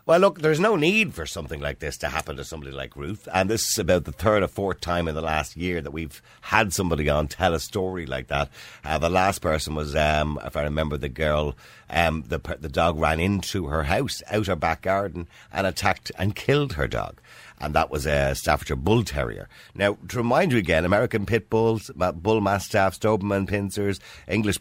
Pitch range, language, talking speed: 80-115 Hz, English, 210 wpm